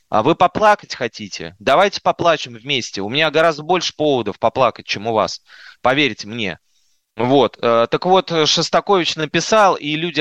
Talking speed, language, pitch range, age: 140 wpm, Russian, 115-165 Hz, 20-39